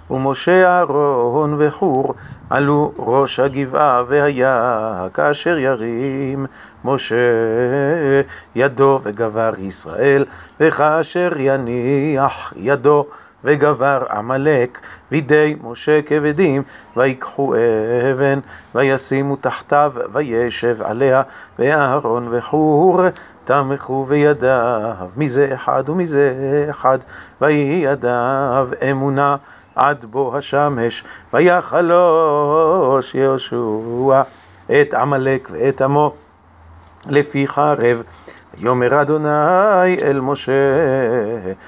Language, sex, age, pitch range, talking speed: Hebrew, male, 40-59, 125-145 Hz, 75 wpm